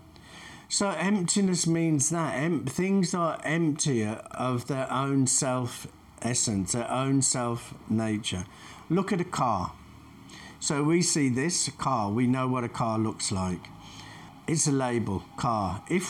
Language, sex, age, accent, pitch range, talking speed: English, male, 50-69, British, 115-155 Hz, 140 wpm